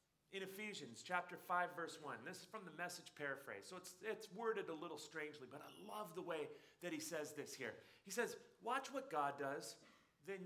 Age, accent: 40-59, American